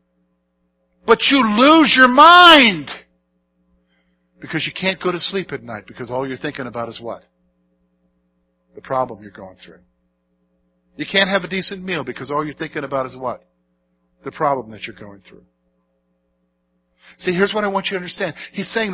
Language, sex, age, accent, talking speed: English, male, 50-69, American, 170 wpm